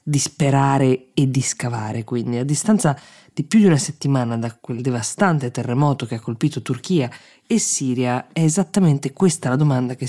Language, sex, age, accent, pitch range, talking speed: Italian, female, 20-39, native, 130-160 Hz, 165 wpm